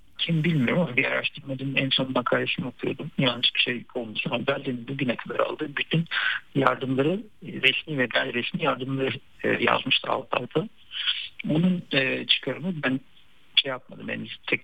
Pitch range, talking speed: 130-160 Hz, 145 wpm